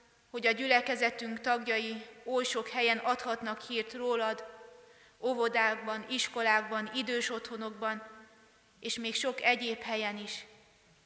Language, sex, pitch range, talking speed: Hungarian, female, 210-235 Hz, 110 wpm